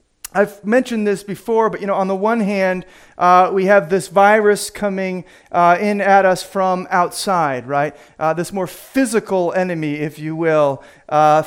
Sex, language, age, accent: male, English, 40-59, American